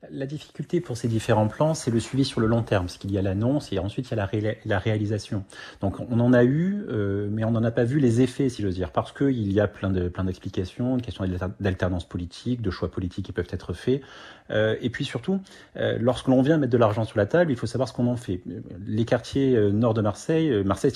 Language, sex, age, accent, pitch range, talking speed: French, male, 40-59, French, 100-135 Hz, 260 wpm